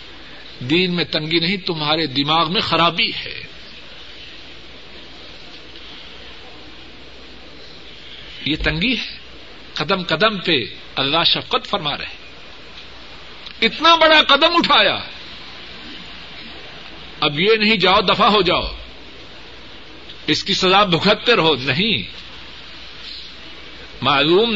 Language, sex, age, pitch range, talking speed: Urdu, male, 60-79, 165-230 Hz, 90 wpm